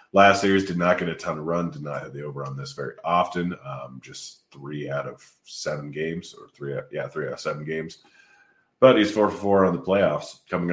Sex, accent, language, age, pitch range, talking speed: male, American, English, 30-49, 80-90 Hz, 235 wpm